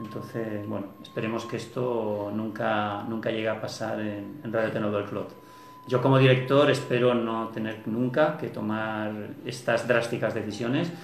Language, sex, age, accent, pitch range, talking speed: Spanish, male, 40-59, Spanish, 110-135 Hz, 150 wpm